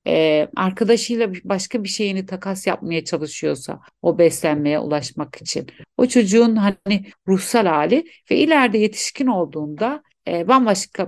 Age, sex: 60-79, female